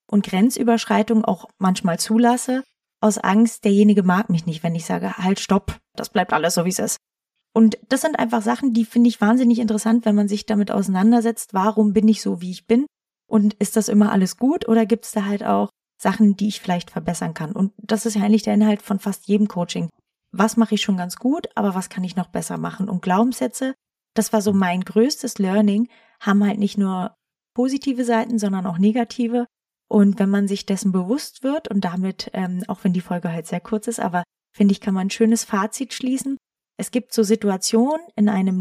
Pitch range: 190-230 Hz